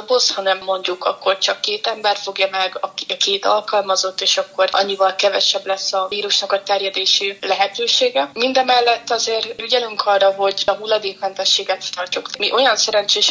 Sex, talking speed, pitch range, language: female, 150 wpm, 190-210 Hz, Hungarian